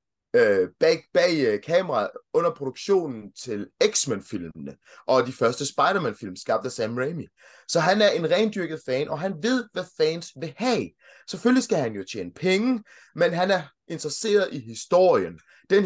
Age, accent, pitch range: 20-39, native, 165-235 Hz